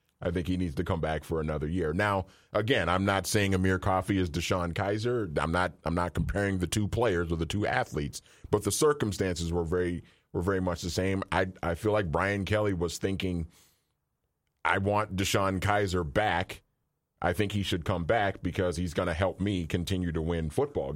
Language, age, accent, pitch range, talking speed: English, 40-59, American, 90-105 Hz, 205 wpm